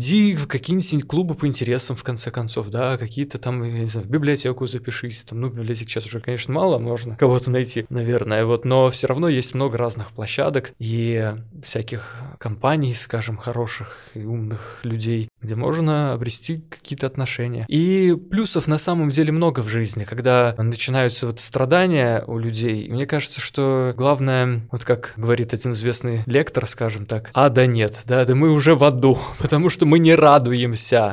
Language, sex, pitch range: Russian, male, 115-140 Hz